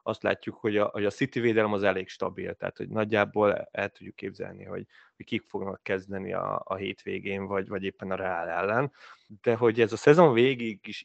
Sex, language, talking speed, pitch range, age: male, Hungarian, 210 wpm, 105-130 Hz, 20-39